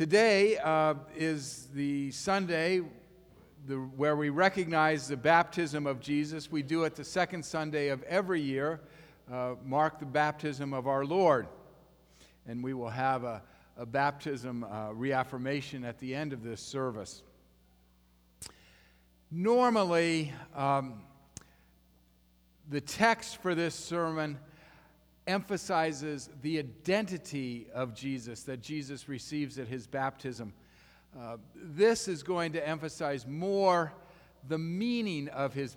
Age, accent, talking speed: 50-69, American, 120 wpm